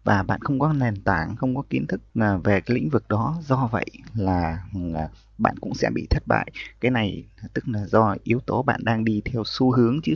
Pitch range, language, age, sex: 100-130 Hz, Vietnamese, 20-39, male